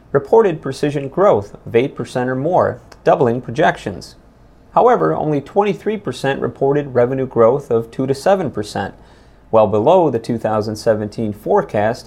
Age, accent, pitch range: 30-49, American, 110-140 Hz